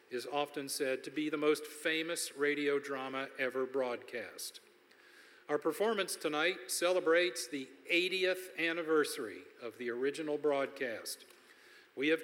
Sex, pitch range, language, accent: male, 140-195 Hz, English, American